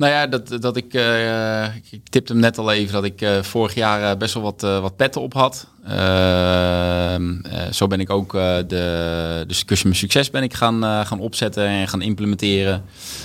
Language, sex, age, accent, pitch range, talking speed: Dutch, male, 20-39, Dutch, 95-110 Hz, 210 wpm